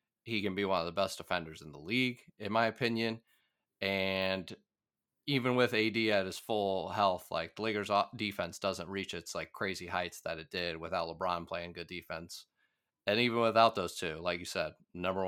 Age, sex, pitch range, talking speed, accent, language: 30-49, male, 95-115 Hz, 195 wpm, American, English